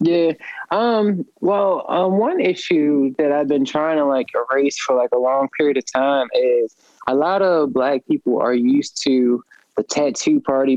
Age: 20-39